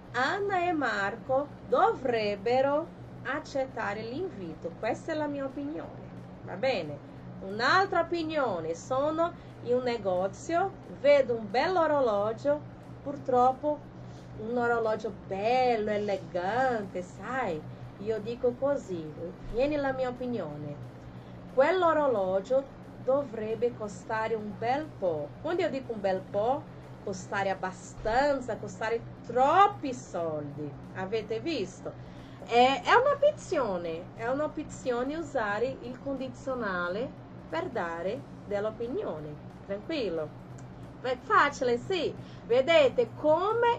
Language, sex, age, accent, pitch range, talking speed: Portuguese, female, 30-49, Brazilian, 210-300 Hz, 100 wpm